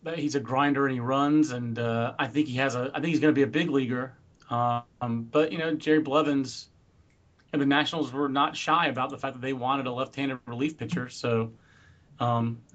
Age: 30-49